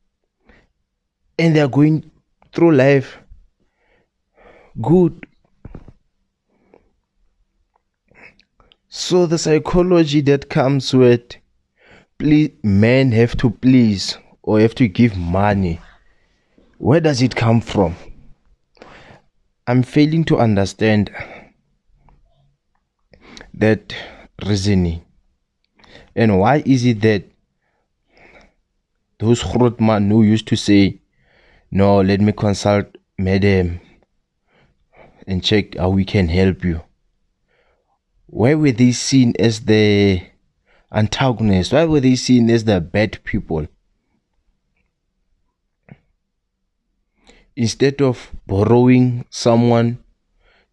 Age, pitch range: 20-39, 100-125 Hz